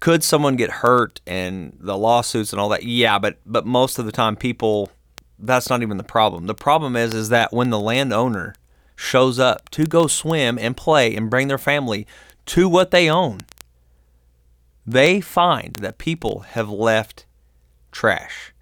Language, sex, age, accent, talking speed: English, male, 30-49, American, 170 wpm